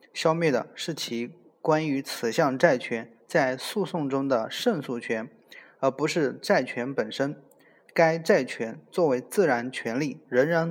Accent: native